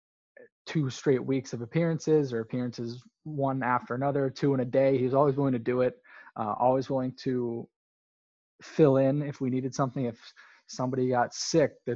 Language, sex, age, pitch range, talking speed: English, male, 20-39, 115-130 Hz, 180 wpm